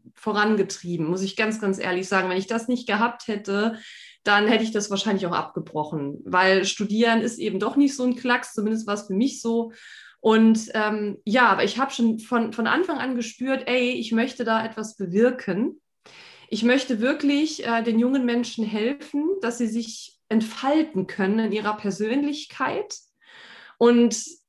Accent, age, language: German, 20-39, German